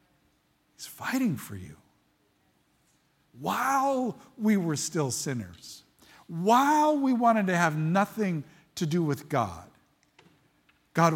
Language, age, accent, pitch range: English, 50-69, American, 145-215 Hz